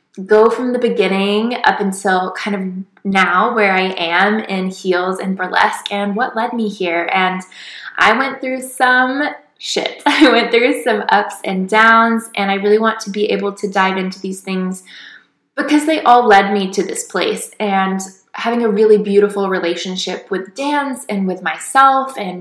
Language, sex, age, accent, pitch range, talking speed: English, female, 20-39, American, 185-230 Hz, 175 wpm